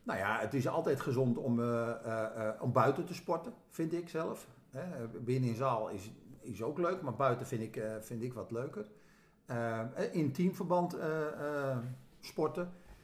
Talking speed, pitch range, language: 160 wpm, 120-155 Hz, Dutch